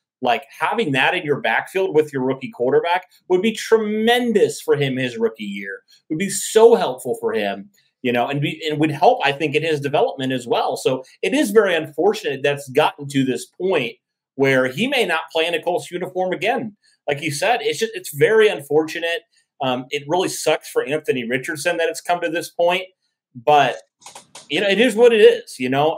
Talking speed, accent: 205 wpm, American